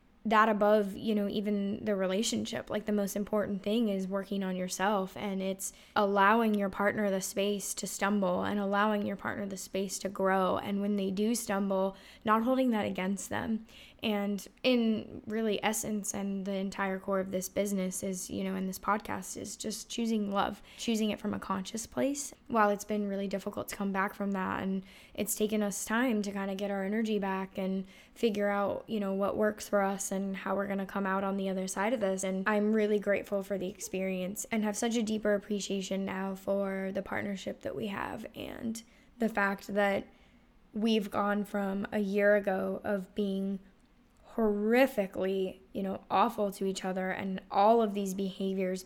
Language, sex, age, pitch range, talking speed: English, female, 10-29, 195-210 Hz, 195 wpm